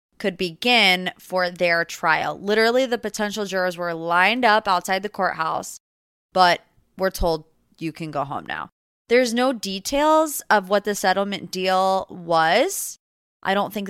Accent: American